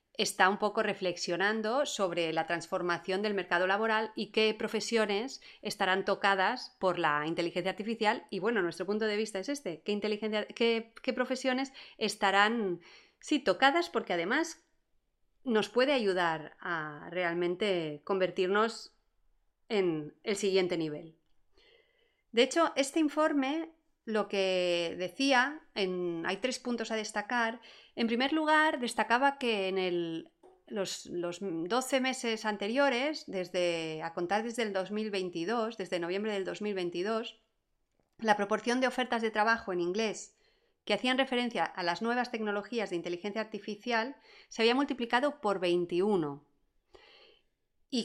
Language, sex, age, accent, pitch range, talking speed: Spanish, female, 30-49, Spanish, 185-245 Hz, 125 wpm